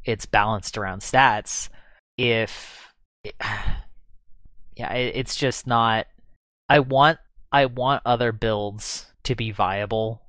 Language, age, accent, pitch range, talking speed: English, 20-39, American, 100-125 Hz, 105 wpm